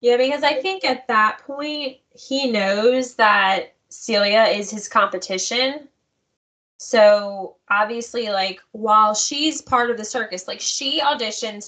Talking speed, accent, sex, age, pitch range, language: 135 wpm, American, female, 10-29, 200-270 Hz, English